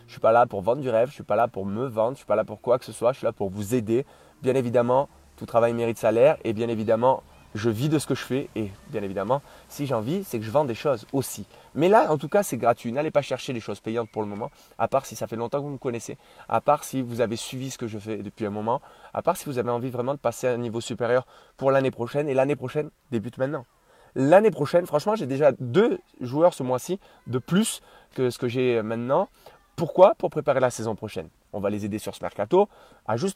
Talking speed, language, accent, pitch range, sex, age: 275 wpm, French, French, 110-140 Hz, male, 20-39